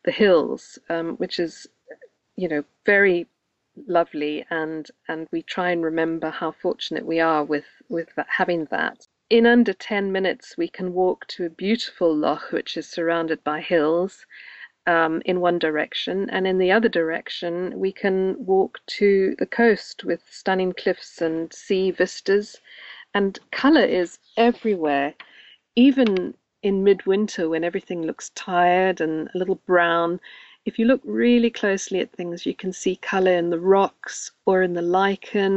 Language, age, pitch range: English, 50-69, 170-205 Hz